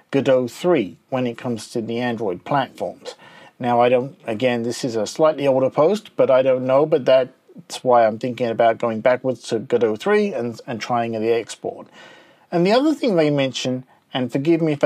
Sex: male